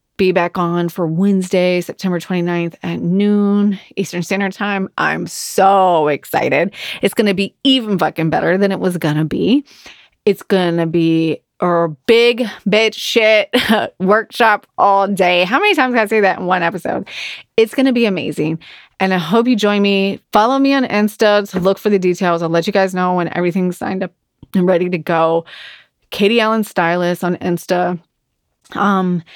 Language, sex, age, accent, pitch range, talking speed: English, female, 30-49, American, 175-210 Hz, 180 wpm